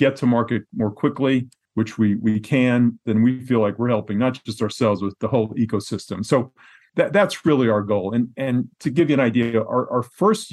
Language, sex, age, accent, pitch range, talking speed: English, male, 40-59, American, 105-125 Hz, 215 wpm